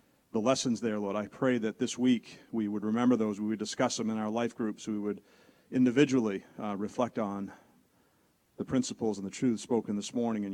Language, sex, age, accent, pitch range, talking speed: English, male, 40-59, American, 105-120 Hz, 205 wpm